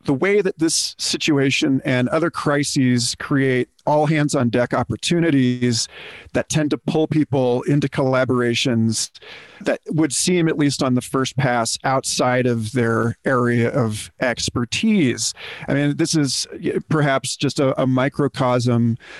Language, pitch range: English, 125-155 Hz